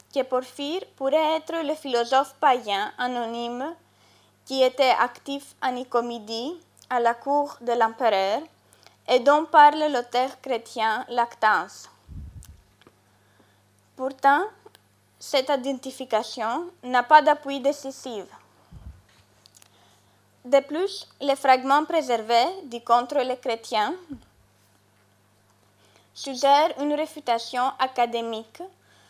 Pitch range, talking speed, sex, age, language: 225-280 Hz, 95 wpm, female, 20-39, French